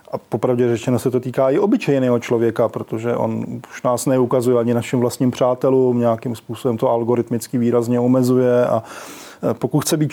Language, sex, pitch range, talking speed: Czech, male, 125-140 Hz, 165 wpm